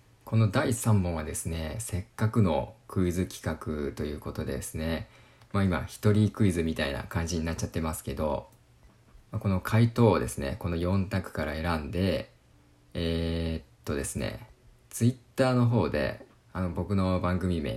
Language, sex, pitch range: Japanese, male, 85-105 Hz